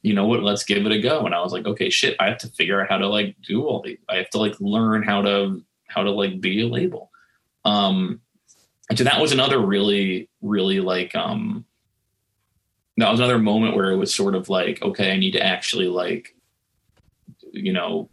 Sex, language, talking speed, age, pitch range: male, English, 220 wpm, 20-39, 95-125 Hz